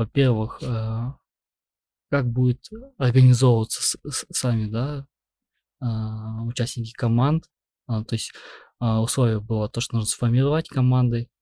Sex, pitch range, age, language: male, 115-130 Hz, 20-39, Russian